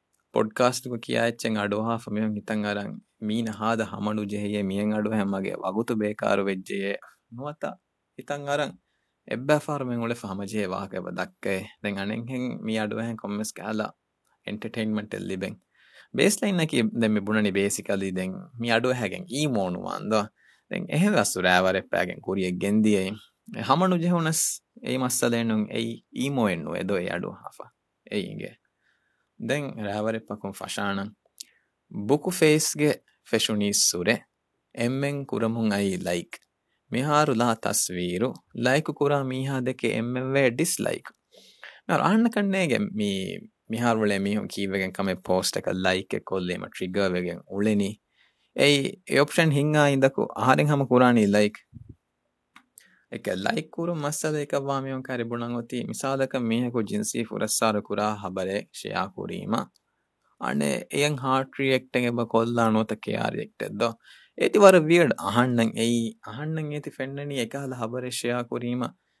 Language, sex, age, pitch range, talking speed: Urdu, male, 20-39, 105-140 Hz, 50 wpm